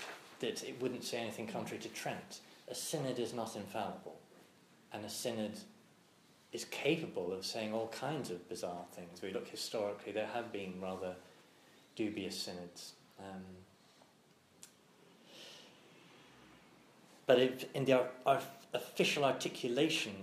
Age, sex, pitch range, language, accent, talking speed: 30-49, male, 100-125 Hz, English, British, 120 wpm